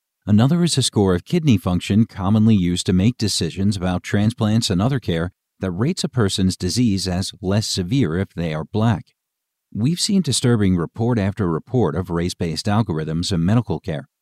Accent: American